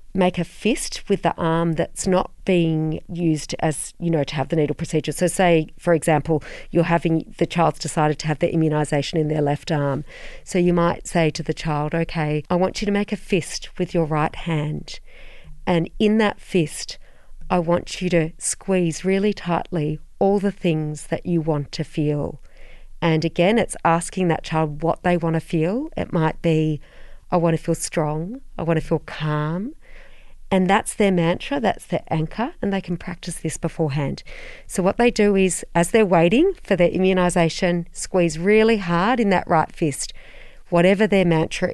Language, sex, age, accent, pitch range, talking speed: English, female, 40-59, Australian, 160-190 Hz, 190 wpm